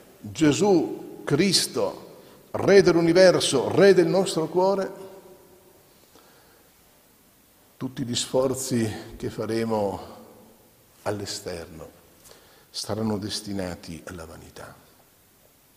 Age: 50-69